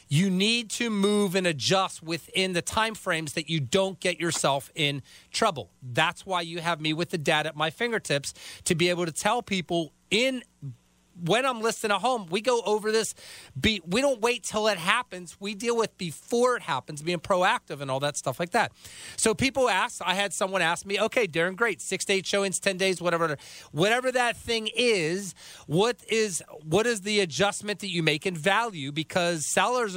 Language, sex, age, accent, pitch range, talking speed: English, male, 30-49, American, 170-215 Hz, 195 wpm